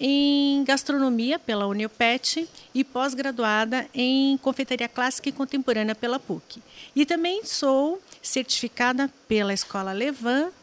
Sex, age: female, 50-69